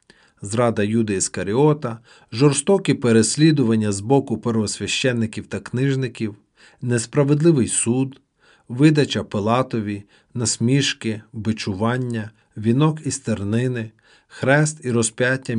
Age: 40-59